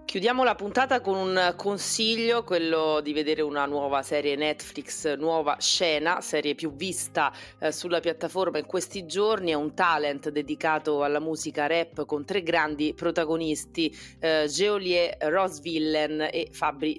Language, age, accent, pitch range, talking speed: Italian, 30-49, native, 150-175 Hz, 145 wpm